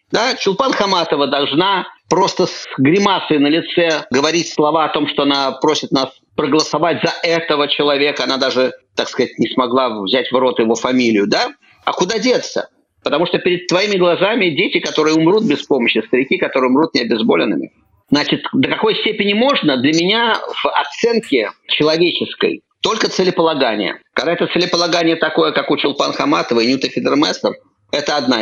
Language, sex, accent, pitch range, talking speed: Russian, male, native, 145-205 Hz, 160 wpm